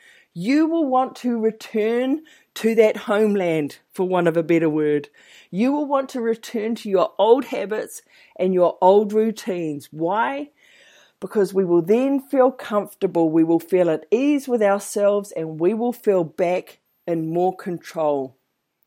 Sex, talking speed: female, 155 wpm